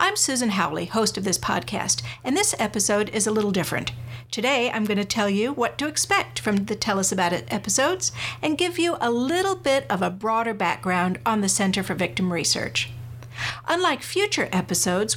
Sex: female